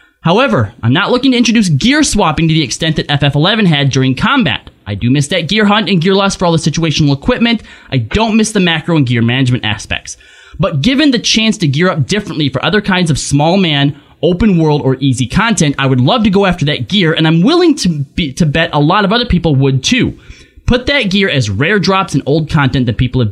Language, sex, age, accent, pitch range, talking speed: English, male, 20-39, American, 135-200 Hz, 235 wpm